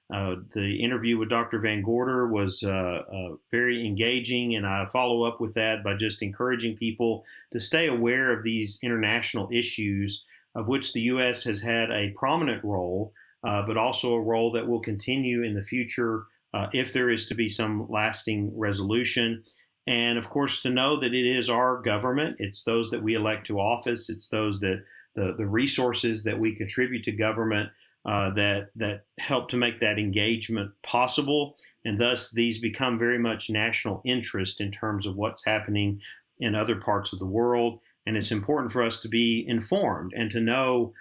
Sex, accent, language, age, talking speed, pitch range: male, American, English, 40-59, 185 wpm, 105-120 Hz